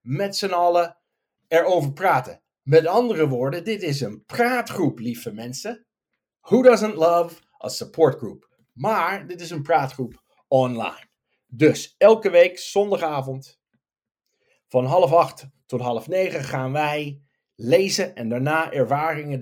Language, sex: Dutch, male